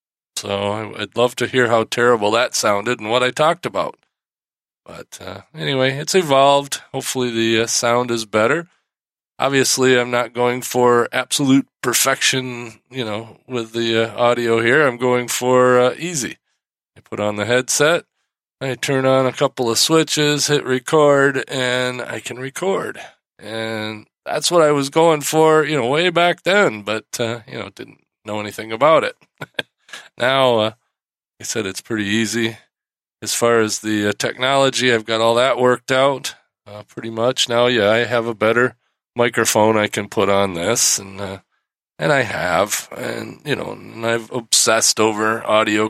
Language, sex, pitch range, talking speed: English, male, 110-140 Hz, 170 wpm